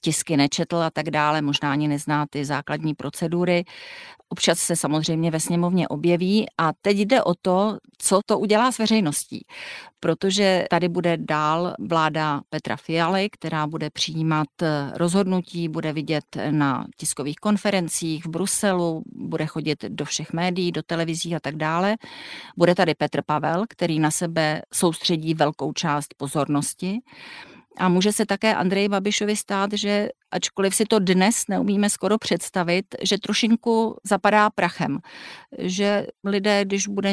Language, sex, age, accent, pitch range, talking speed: Czech, female, 40-59, native, 155-200 Hz, 145 wpm